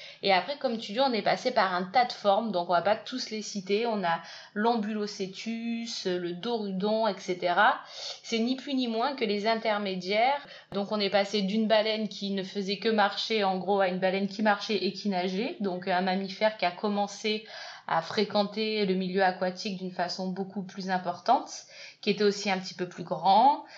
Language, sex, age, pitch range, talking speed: French, female, 20-39, 190-225 Hz, 200 wpm